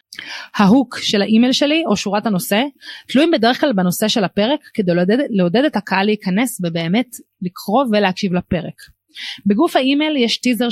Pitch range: 195-250 Hz